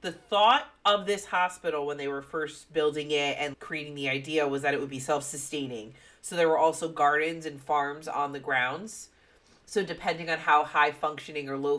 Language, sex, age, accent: English, female, 30-49, American